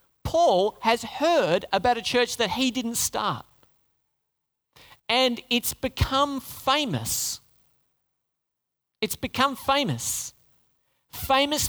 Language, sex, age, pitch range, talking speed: English, male, 40-59, 175-245 Hz, 90 wpm